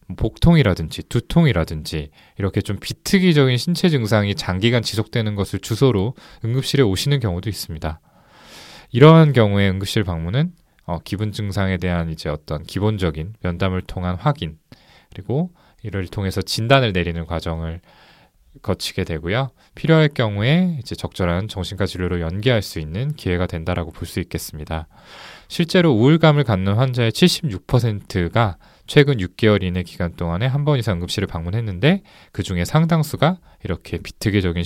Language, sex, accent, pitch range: Korean, male, native, 90-135 Hz